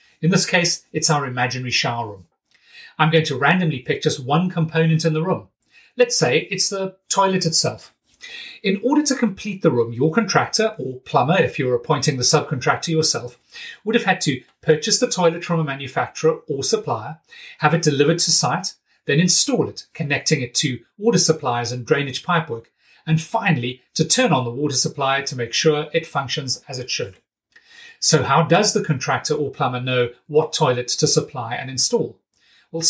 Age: 30-49